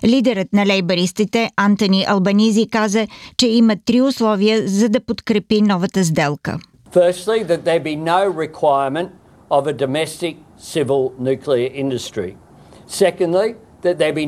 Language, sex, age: Bulgarian, male, 50-69